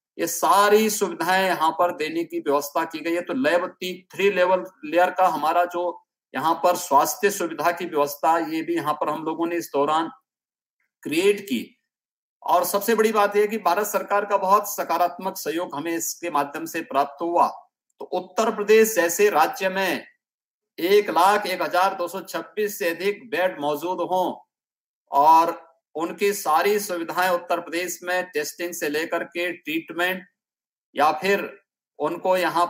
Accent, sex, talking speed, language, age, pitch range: native, male, 155 wpm, Hindi, 50-69, 165-205 Hz